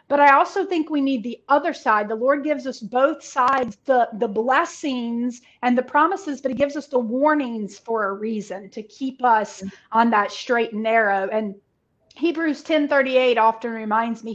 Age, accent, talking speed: 30-49, American, 190 wpm